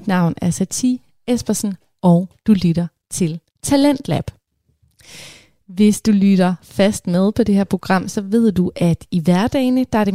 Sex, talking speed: female, 165 wpm